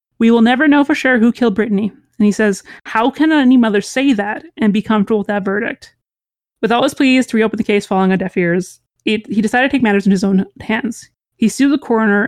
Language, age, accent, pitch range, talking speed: English, 30-49, American, 210-245 Hz, 245 wpm